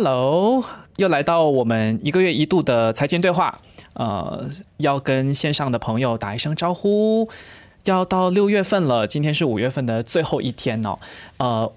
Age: 20-39